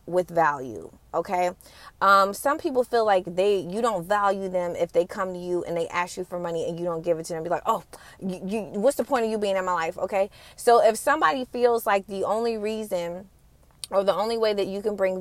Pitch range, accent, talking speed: 180-225 Hz, American, 245 wpm